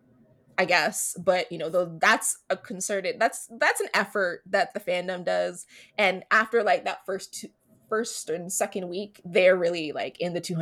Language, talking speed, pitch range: English, 175 wpm, 180-235 Hz